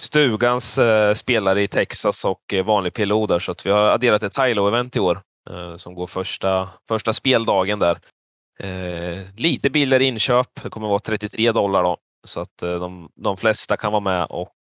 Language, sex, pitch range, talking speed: English, male, 95-120 Hz, 190 wpm